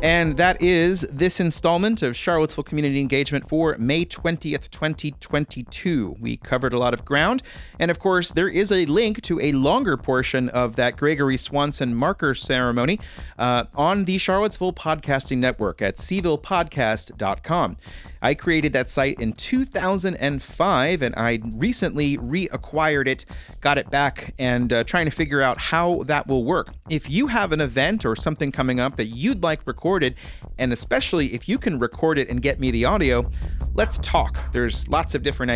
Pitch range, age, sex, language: 115-160 Hz, 30-49, male, English